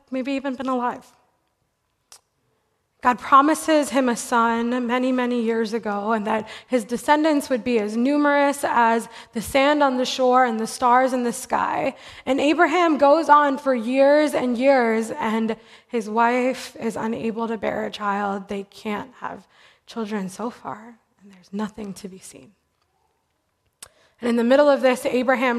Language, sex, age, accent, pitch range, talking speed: English, female, 20-39, American, 220-260 Hz, 160 wpm